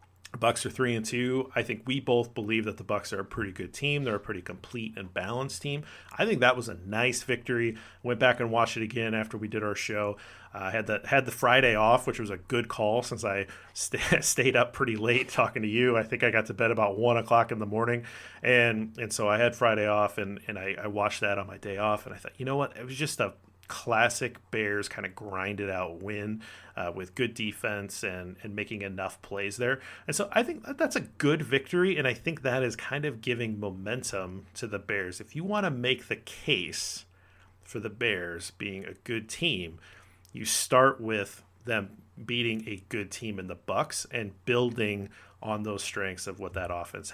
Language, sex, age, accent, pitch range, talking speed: English, male, 30-49, American, 100-120 Hz, 225 wpm